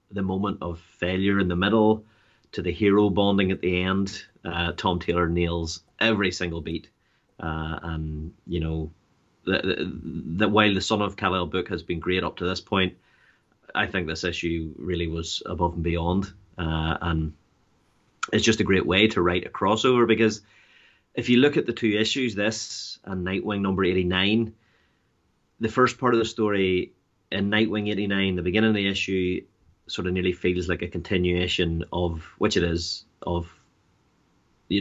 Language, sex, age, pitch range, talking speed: English, male, 30-49, 90-105 Hz, 180 wpm